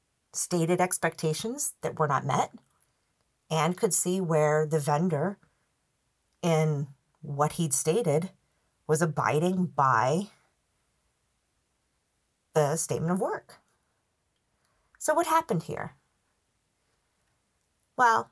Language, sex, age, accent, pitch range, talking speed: English, female, 40-59, American, 155-215 Hz, 90 wpm